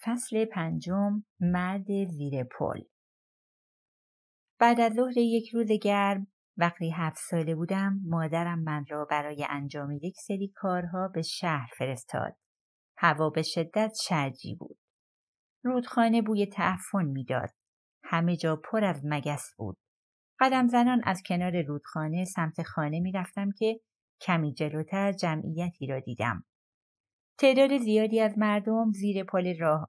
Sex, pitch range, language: female, 155-200 Hz, Persian